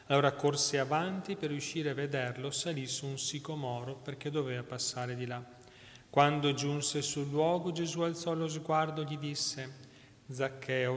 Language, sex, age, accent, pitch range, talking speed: Italian, male, 40-59, native, 125-145 Hz, 155 wpm